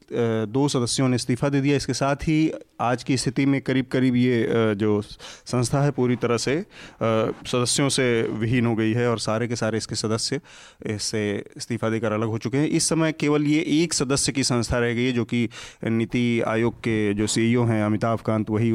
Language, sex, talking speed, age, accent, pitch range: Hindi, male, 200 wpm, 30-49, native, 115-140 Hz